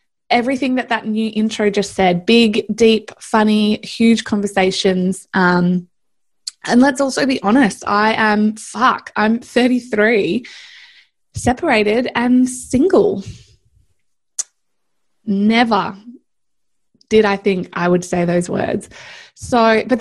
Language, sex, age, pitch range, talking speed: English, female, 20-39, 200-240 Hz, 110 wpm